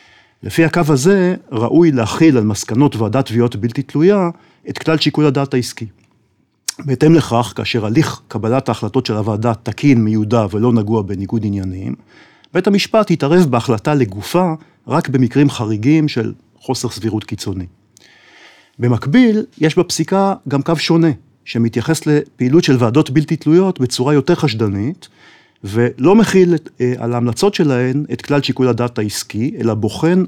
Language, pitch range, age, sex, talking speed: Hebrew, 110-155 Hz, 50-69, male, 135 wpm